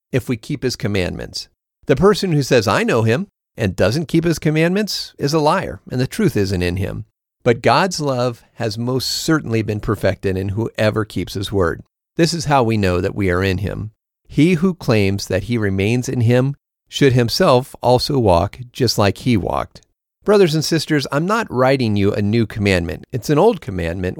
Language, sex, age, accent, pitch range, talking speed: English, male, 50-69, American, 100-145 Hz, 195 wpm